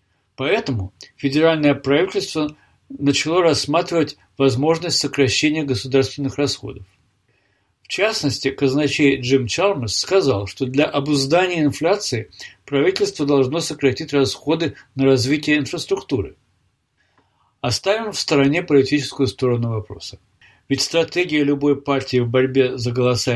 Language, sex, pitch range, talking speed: Russian, male, 125-155 Hz, 105 wpm